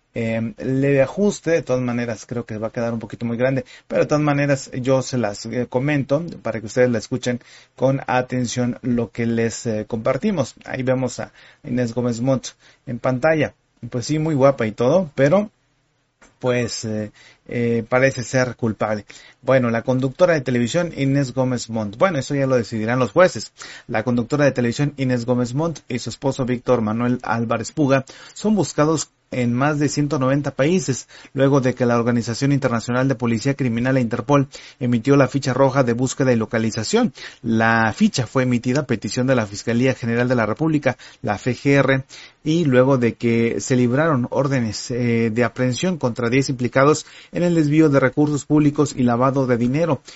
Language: English